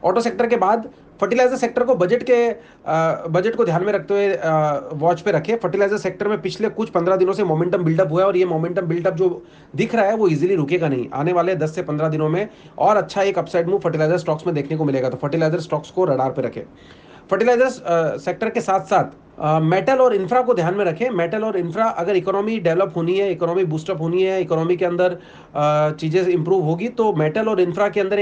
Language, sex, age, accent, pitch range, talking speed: Hindi, male, 30-49, native, 160-195 Hz, 205 wpm